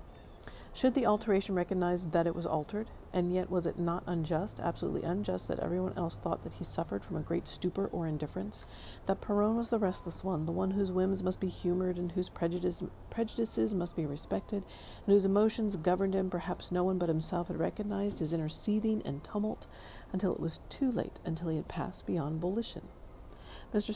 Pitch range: 170-200 Hz